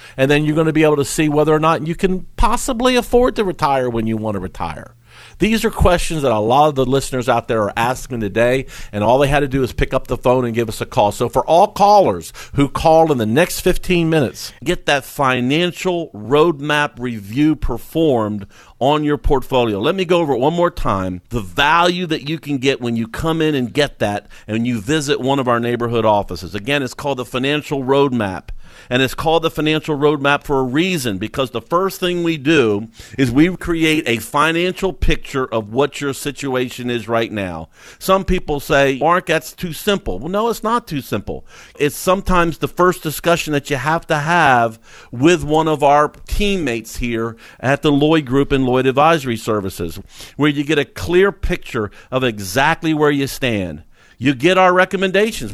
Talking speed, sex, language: 205 wpm, male, English